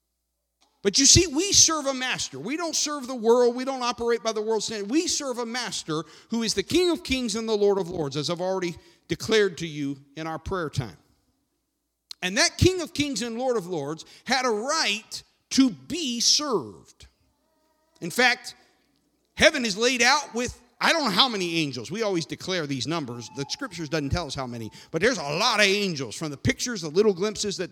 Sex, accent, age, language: male, American, 50-69, English